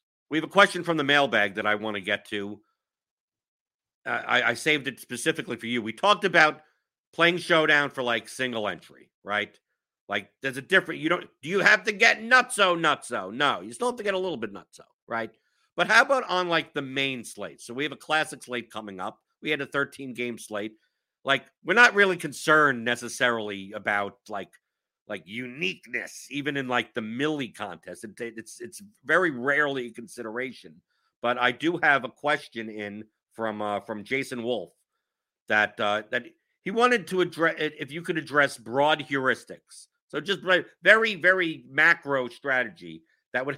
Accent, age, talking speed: American, 50-69, 185 wpm